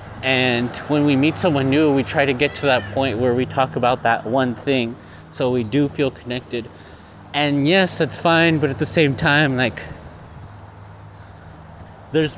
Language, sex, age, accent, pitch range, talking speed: English, male, 30-49, American, 105-140 Hz, 175 wpm